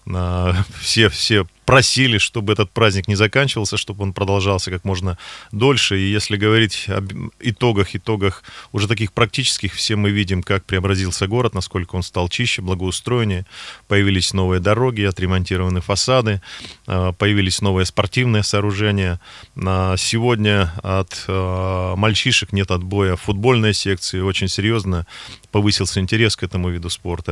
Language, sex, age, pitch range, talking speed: Russian, male, 30-49, 95-110 Hz, 125 wpm